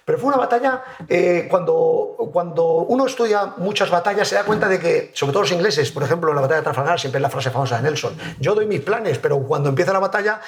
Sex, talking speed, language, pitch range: male, 240 wpm, Spanish, 150-215 Hz